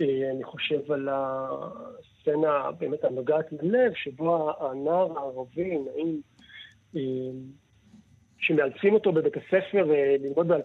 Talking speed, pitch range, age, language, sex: 90 wpm, 135-185 Hz, 40-59, Hebrew, male